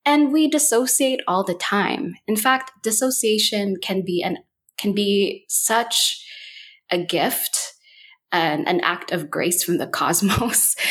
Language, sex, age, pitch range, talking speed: English, female, 20-39, 170-250 Hz, 140 wpm